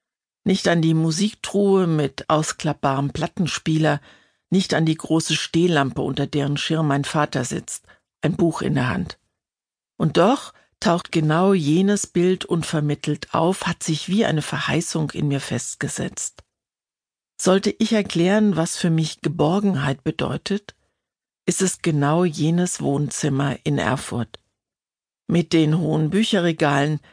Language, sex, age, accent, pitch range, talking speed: German, female, 60-79, German, 150-175 Hz, 130 wpm